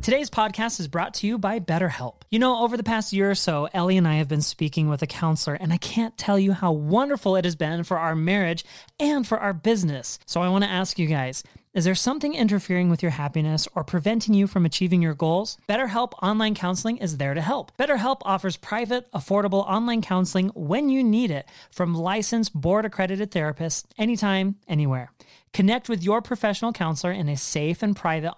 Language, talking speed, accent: English, 205 wpm, American